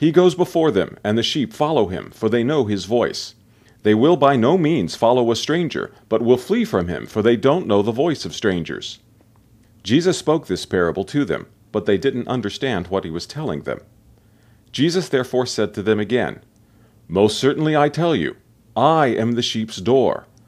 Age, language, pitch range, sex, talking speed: 40-59, English, 110-155 Hz, male, 195 wpm